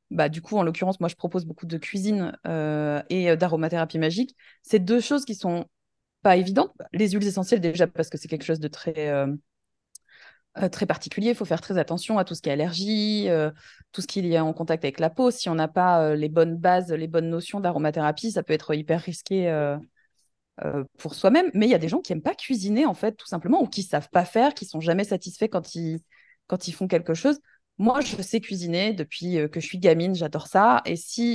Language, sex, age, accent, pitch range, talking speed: French, female, 20-39, French, 165-220 Hz, 240 wpm